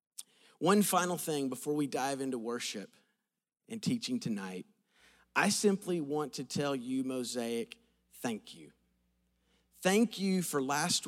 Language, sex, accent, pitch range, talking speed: English, male, American, 130-195 Hz, 130 wpm